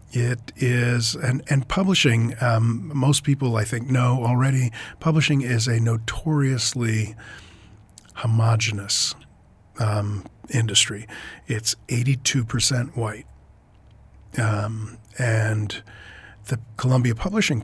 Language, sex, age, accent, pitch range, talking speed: English, male, 40-59, American, 110-135 Hz, 90 wpm